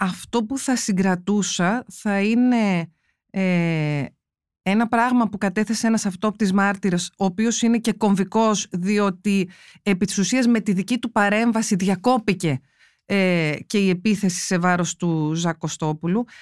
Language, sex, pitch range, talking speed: Greek, female, 190-240 Hz, 130 wpm